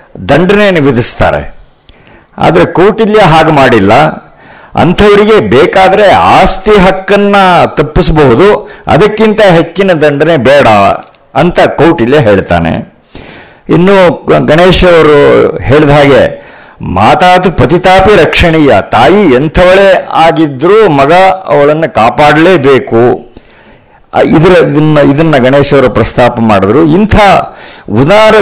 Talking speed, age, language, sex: 80 wpm, 50-69, Kannada, male